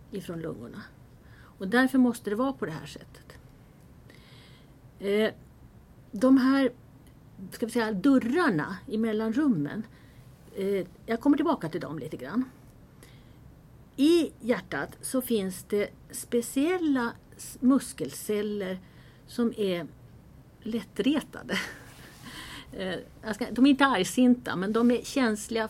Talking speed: 105 wpm